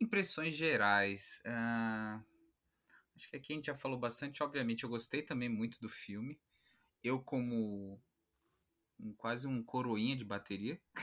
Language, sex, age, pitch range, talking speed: Portuguese, male, 20-39, 115-135 Hz, 140 wpm